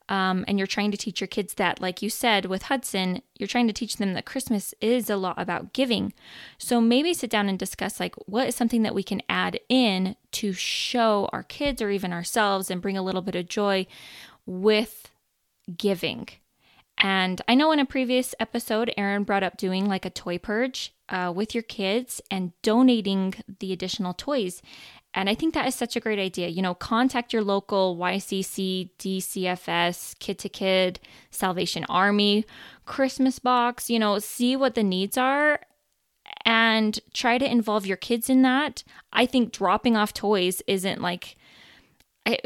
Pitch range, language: 190-235 Hz, English